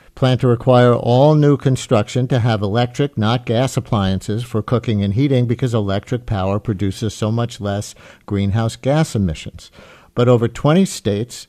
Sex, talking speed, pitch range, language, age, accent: male, 155 wpm, 105-125 Hz, English, 50-69, American